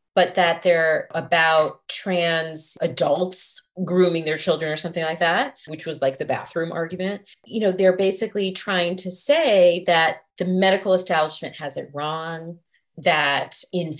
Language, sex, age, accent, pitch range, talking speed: English, female, 30-49, American, 165-210 Hz, 150 wpm